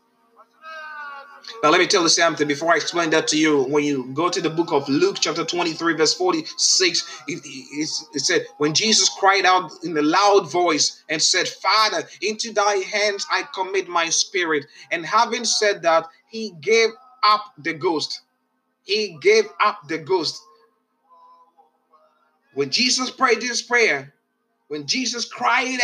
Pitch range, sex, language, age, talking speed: 185-255 Hz, male, Finnish, 30-49, 155 wpm